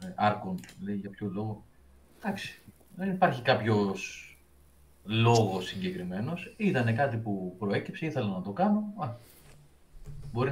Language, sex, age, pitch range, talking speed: Greek, male, 30-49, 100-145 Hz, 120 wpm